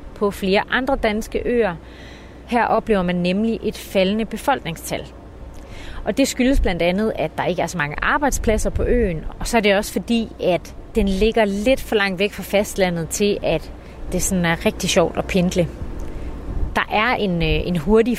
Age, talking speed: 30-49, 175 wpm